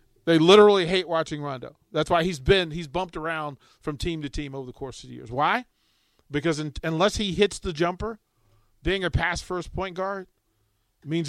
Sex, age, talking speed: male, 40-59, 190 wpm